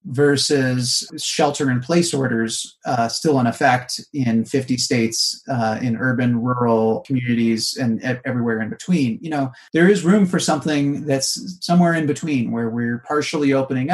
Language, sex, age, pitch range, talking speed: English, male, 30-49, 120-155 Hz, 150 wpm